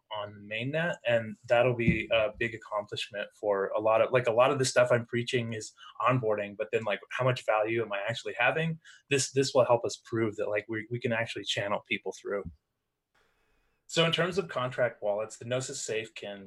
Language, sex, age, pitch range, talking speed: English, male, 20-39, 110-140 Hz, 210 wpm